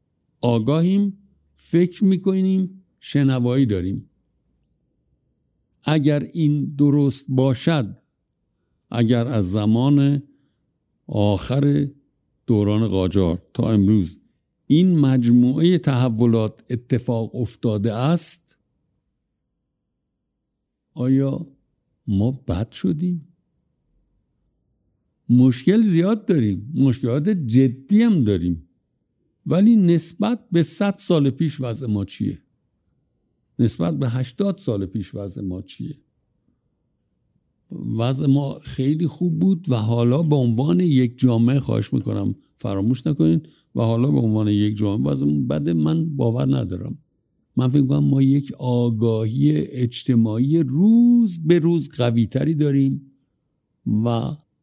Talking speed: 100 wpm